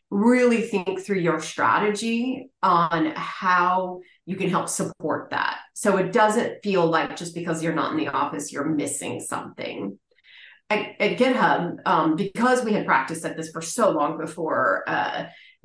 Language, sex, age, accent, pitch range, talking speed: English, female, 30-49, American, 165-205 Hz, 160 wpm